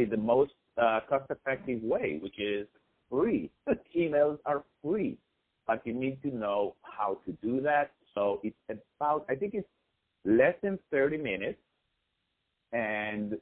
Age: 50-69